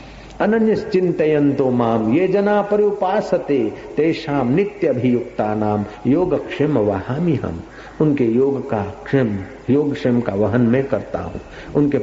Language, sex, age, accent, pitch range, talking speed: Hindi, male, 50-69, native, 110-150 Hz, 125 wpm